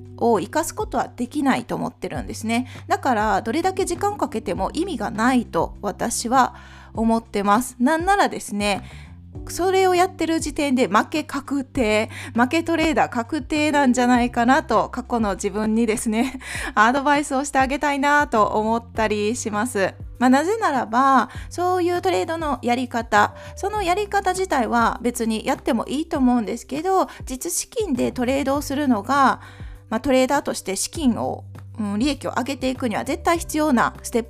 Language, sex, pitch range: Japanese, female, 220-310 Hz